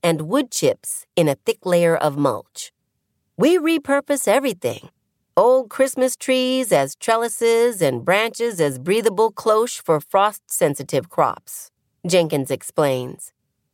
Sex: female